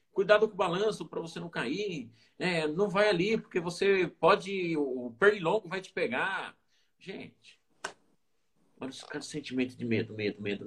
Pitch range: 90-120 Hz